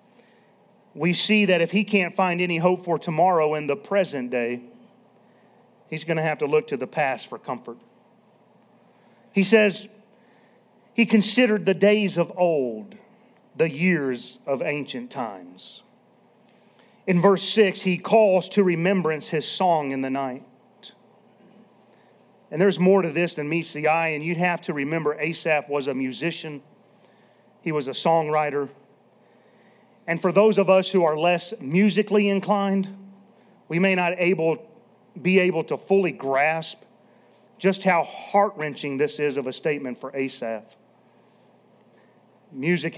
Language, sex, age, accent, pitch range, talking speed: English, male, 40-59, American, 145-200 Hz, 140 wpm